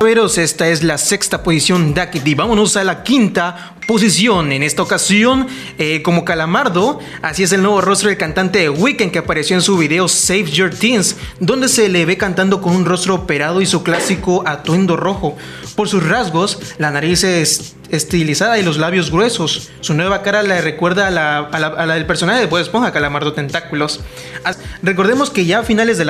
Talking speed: 185 wpm